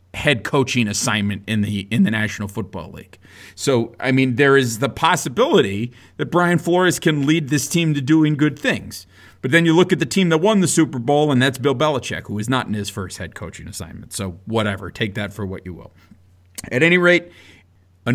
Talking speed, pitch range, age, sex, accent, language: 215 wpm, 100-165 Hz, 40-59, male, American, English